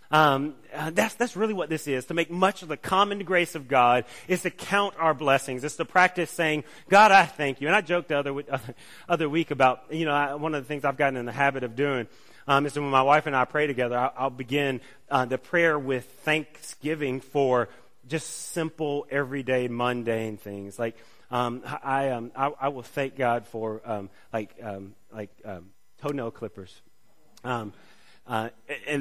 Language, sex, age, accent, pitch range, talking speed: English, male, 30-49, American, 125-175 Hz, 205 wpm